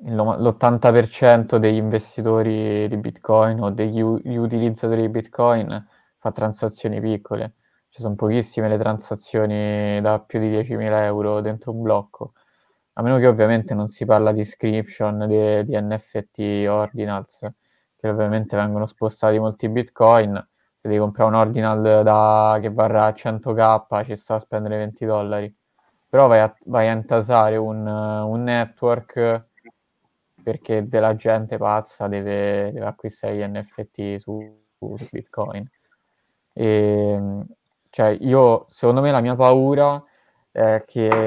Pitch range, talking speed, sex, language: 105-115 Hz, 135 wpm, male, Italian